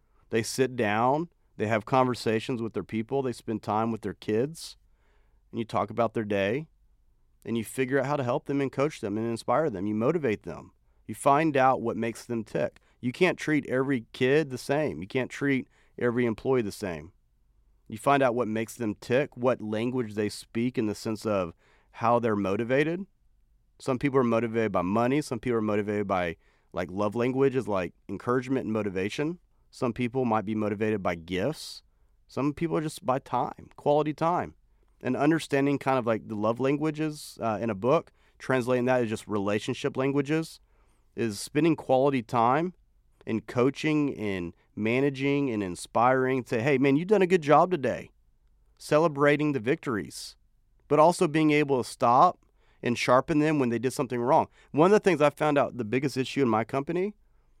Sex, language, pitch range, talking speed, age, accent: male, English, 110-140 Hz, 185 wpm, 40-59, American